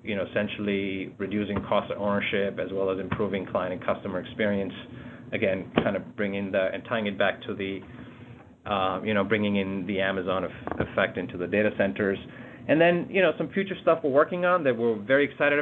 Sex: male